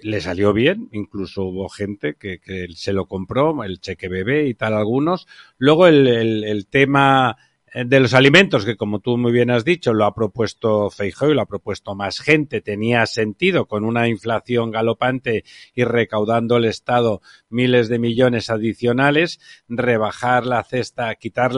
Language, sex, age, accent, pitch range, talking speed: Spanish, male, 50-69, Spanish, 115-140 Hz, 165 wpm